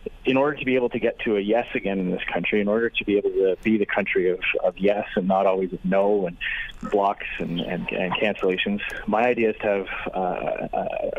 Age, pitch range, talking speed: 30-49, 100-130 Hz, 225 wpm